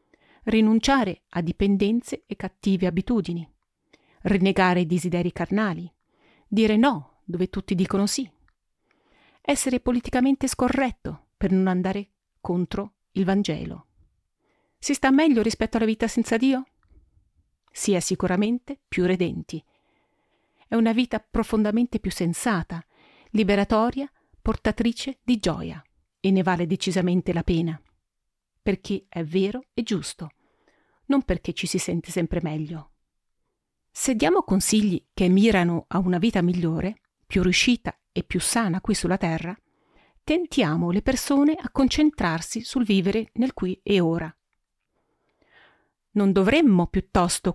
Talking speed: 120 wpm